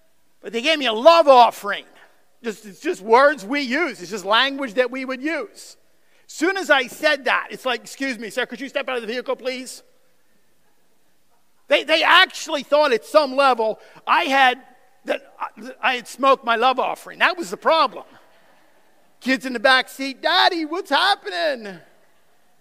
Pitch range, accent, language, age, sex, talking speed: 215-275 Hz, American, English, 50-69, male, 175 wpm